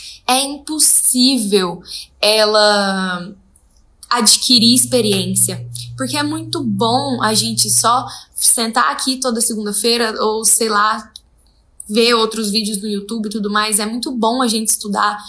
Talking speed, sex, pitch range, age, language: 130 wpm, female, 200-245 Hz, 10-29, Portuguese